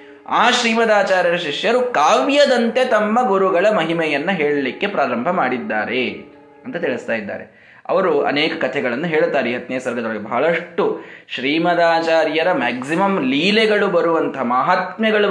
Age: 20-39